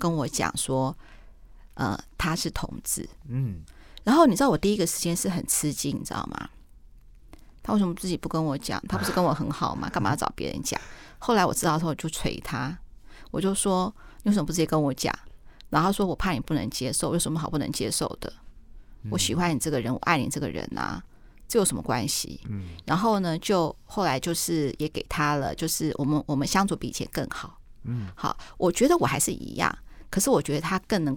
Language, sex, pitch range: Chinese, female, 135-175 Hz